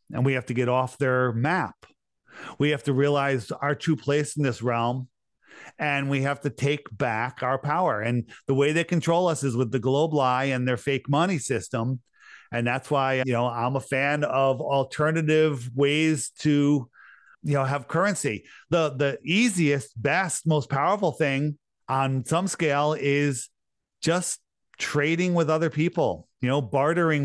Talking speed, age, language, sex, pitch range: 170 wpm, 40-59, English, male, 130-155 Hz